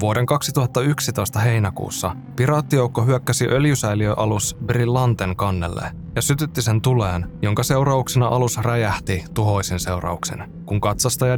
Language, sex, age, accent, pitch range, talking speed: Finnish, male, 20-39, native, 105-125 Hz, 105 wpm